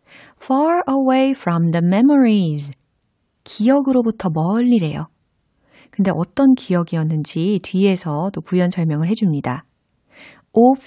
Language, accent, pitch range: Korean, native, 165-230 Hz